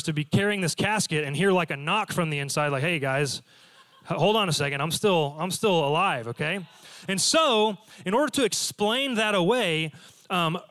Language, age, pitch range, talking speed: English, 30-49, 150-195 Hz, 190 wpm